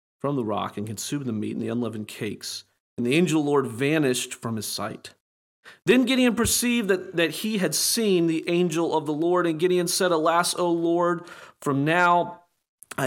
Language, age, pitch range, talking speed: English, 40-59, 125-170 Hz, 200 wpm